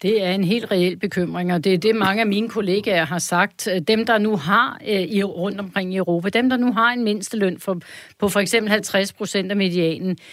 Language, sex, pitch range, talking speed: Danish, female, 180-225 Hz, 220 wpm